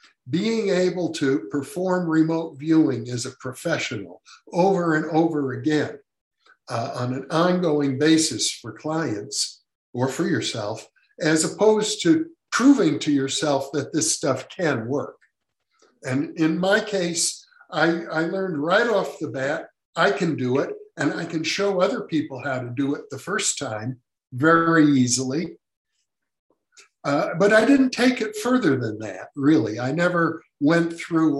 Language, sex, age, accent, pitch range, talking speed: English, male, 60-79, American, 135-170 Hz, 150 wpm